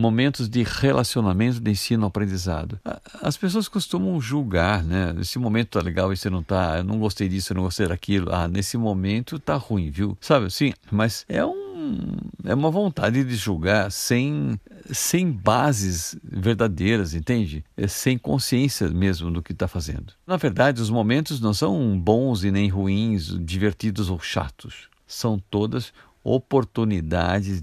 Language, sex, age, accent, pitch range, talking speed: Portuguese, male, 50-69, Brazilian, 95-125 Hz, 155 wpm